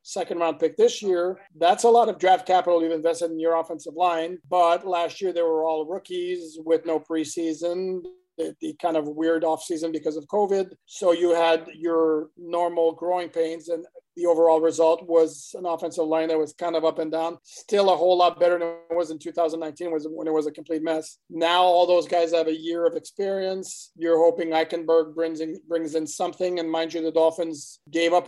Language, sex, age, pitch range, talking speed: English, male, 40-59, 165-180 Hz, 205 wpm